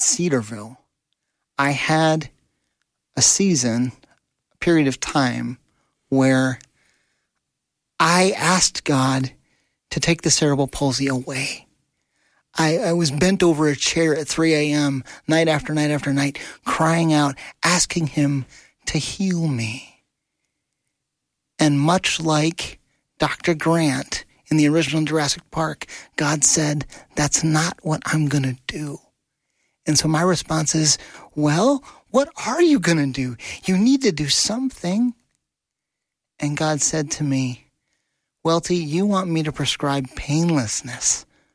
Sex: male